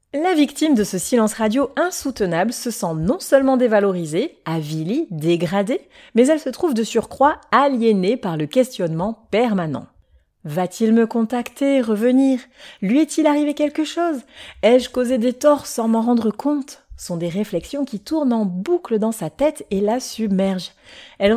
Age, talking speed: 30-49, 155 wpm